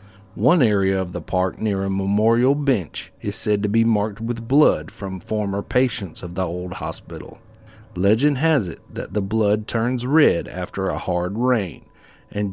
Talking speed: 170 wpm